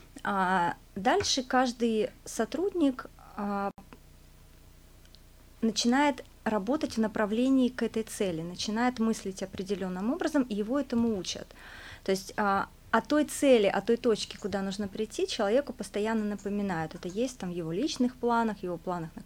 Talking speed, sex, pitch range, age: 130 wpm, female, 195-240 Hz, 30-49